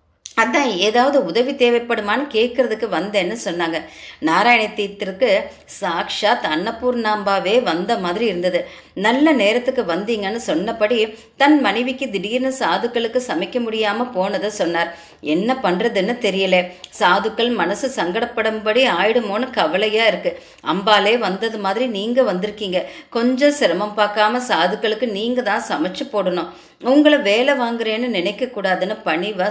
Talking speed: 110 wpm